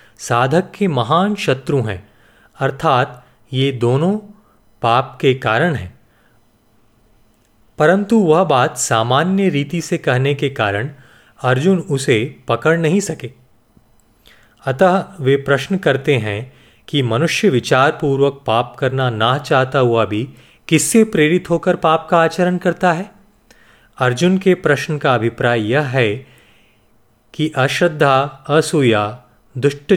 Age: 30-49